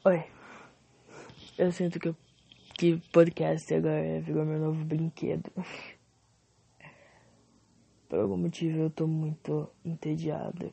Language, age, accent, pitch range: English, 20-39, Brazilian, 155-185 Hz